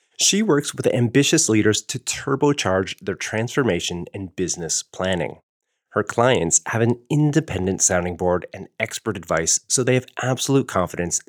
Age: 30-49